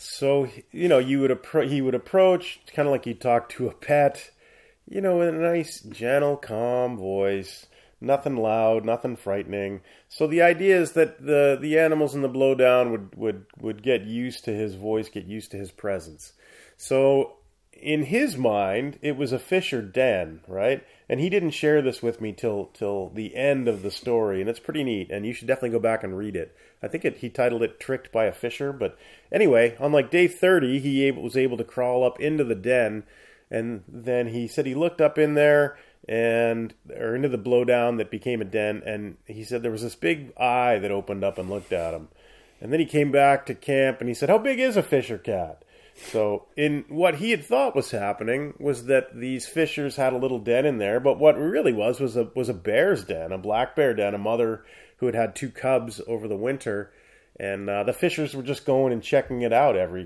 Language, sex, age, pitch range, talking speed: English, male, 30-49, 105-140 Hz, 215 wpm